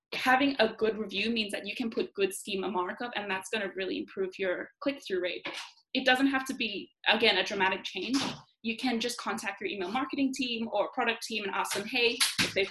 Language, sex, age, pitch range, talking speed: English, female, 20-39, 200-250 Hz, 220 wpm